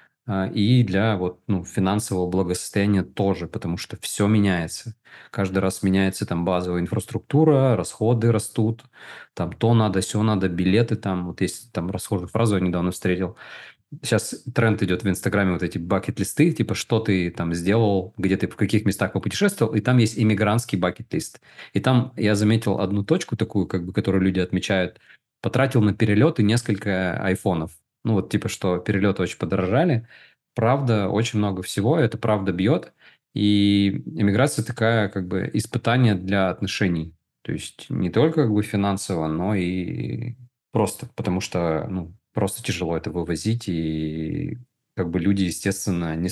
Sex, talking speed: male, 155 wpm